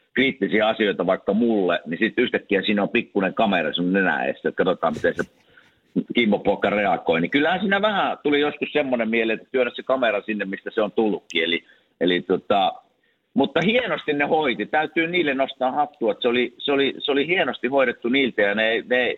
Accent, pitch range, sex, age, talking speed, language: native, 100-145 Hz, male, 50-69, 190 wpm, Finnish